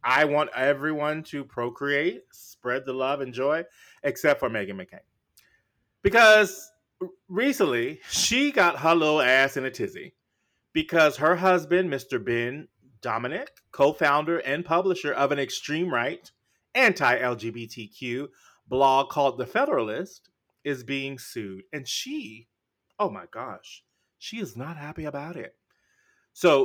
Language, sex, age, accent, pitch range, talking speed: English, male, 30-49, American, 120-160 Hz, 130 wpm